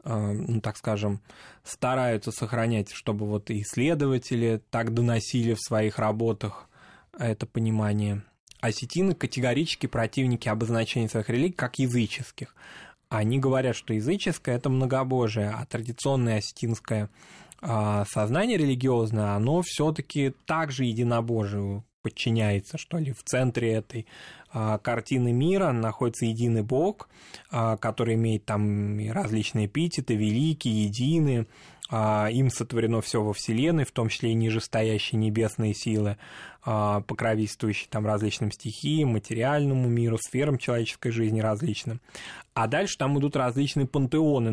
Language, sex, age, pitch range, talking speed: Russian, male, 20-39, 110-130 Hz, 115 wpm